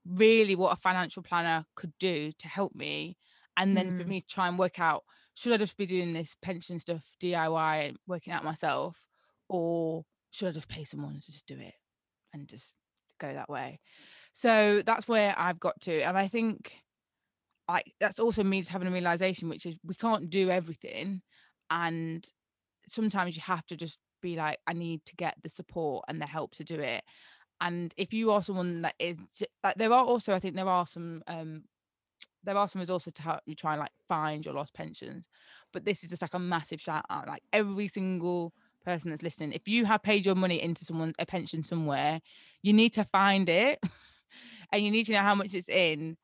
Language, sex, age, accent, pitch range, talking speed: English, female, 20-39, British, 165-200 Hz, 210 wpm